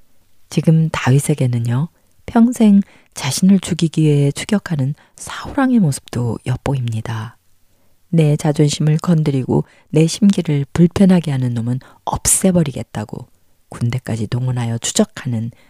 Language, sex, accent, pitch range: Korean, female, native, 115-165 Hz